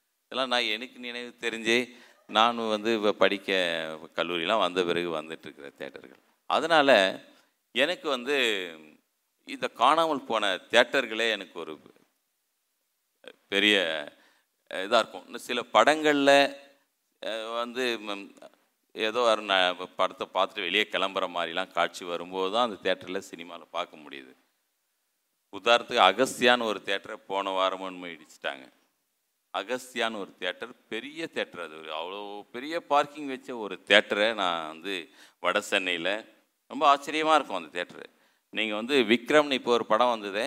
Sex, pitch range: male, 95-125 Hz